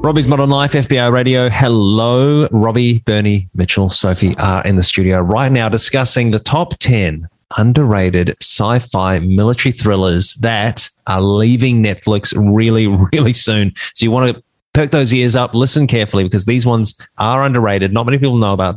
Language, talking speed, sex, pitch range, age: English, 165 wpm, male, 95-120 Hz, 20-39